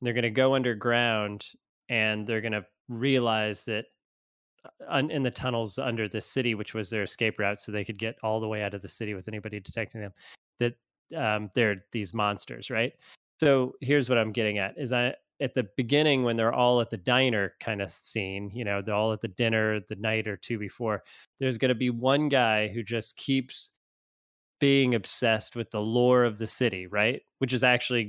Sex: male